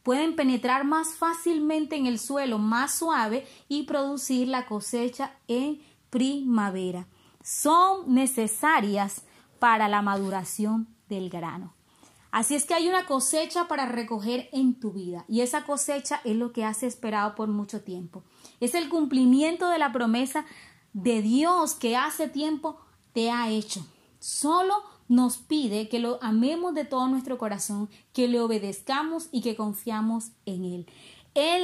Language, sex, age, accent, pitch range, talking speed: Spanish, female, 30-49, American, 215-280 Hz, 145 wpm